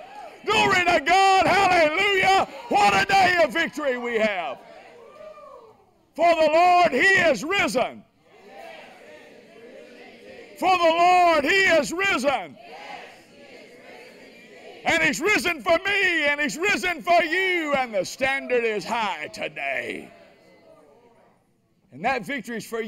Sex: male